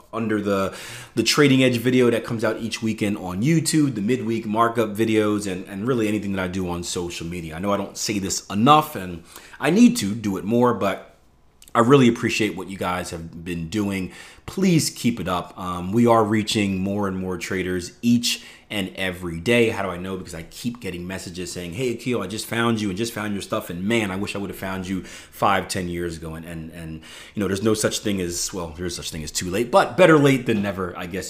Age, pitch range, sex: 30-49, 90-115 Hz, male